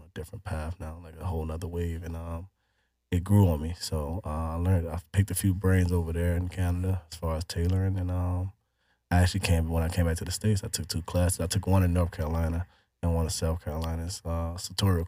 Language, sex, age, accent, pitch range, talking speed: English, male, 20-39, American, 85-95 Hz, 240 wpm